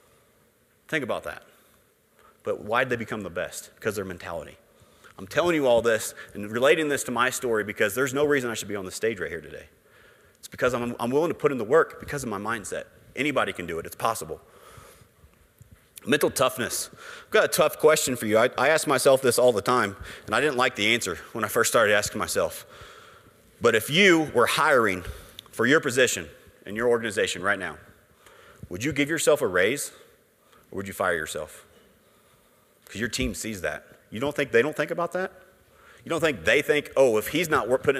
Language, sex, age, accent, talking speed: English, male, 30-49, American, 210 wpm